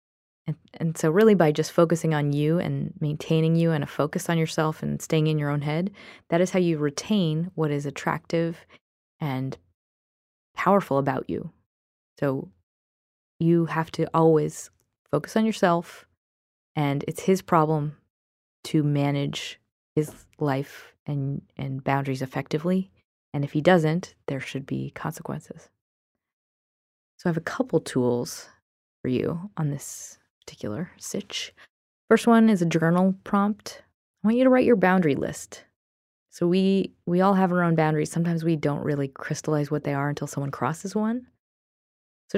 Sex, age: female, 20-39